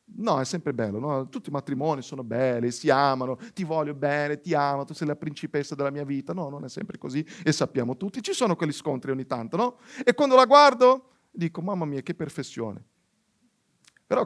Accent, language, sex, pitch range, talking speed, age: native, Italian, male, 145-210 Hz, 205 wpm, 40-59